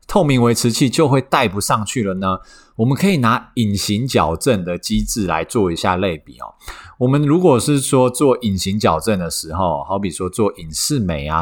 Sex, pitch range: male, 95-140 Hz